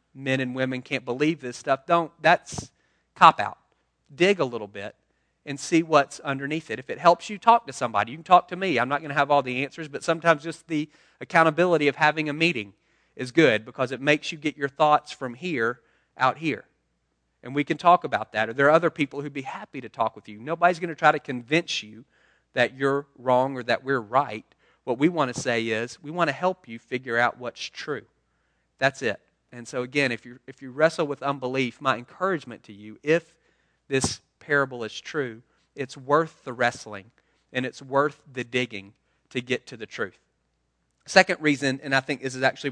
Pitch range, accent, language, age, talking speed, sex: 125-150 Hz, American, English, 40-59, 215 wpm, male